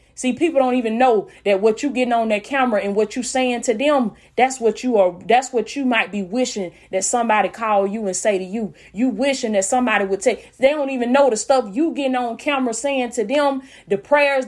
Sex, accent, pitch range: female, American, 220-275 Hz